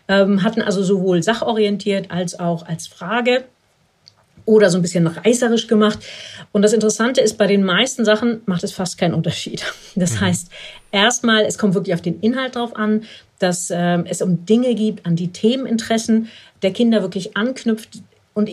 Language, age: German, 50-69